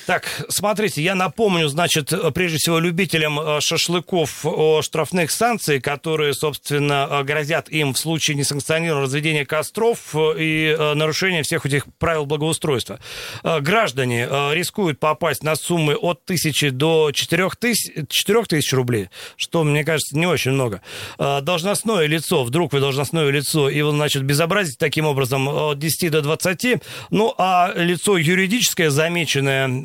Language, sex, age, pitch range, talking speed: Russian, male, 40-59, 145-175 Hz, 130 wpm